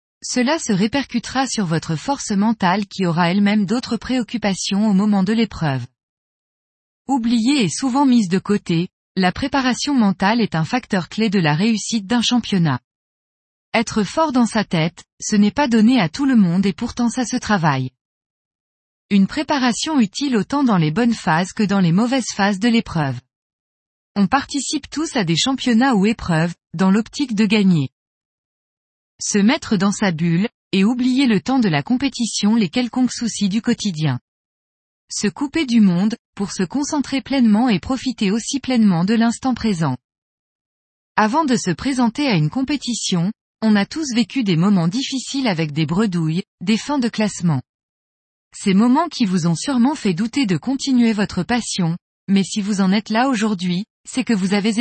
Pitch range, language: 180-245 Hz, French